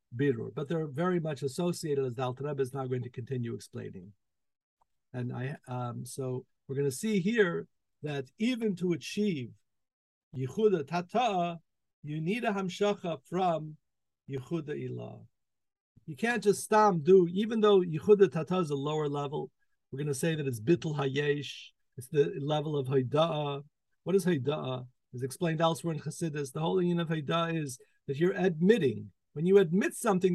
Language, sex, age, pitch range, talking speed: English, male, 50-69, 140-205 Hz, 165 wpm